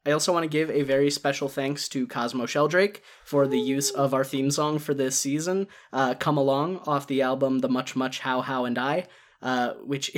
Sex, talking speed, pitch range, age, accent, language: male, 220 wpm, 130-150 Hz, 10-29, American, English